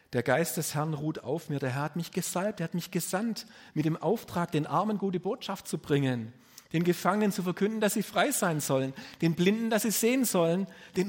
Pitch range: 125-165 Hz